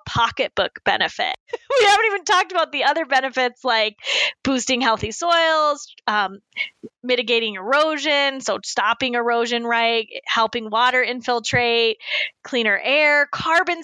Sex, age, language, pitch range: female, 10-29, English, 220-270 Hz